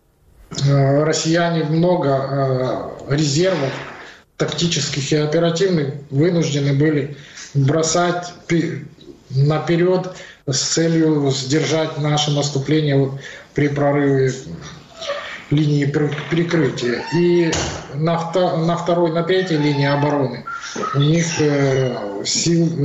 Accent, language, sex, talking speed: native, Ukrainian, male, 75 wpm